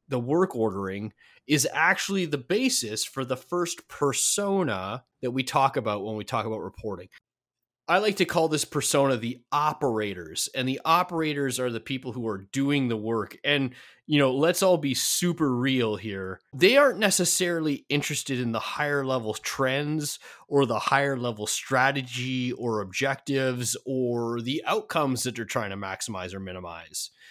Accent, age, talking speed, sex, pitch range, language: American, 30-49, 165 wpm, male, 110-145 Hz, English